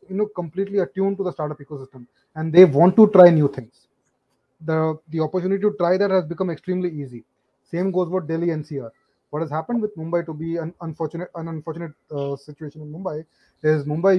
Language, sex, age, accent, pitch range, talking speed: English, male, 30-49, Indian, 150-180 Hz, 200 wpm